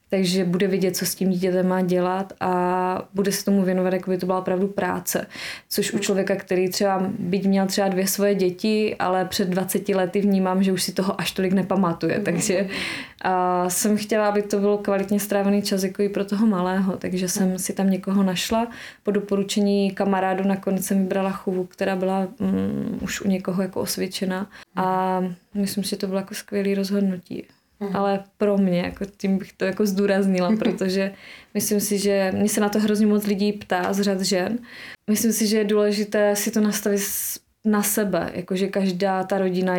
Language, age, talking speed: Czech, 20-39, 190 wpm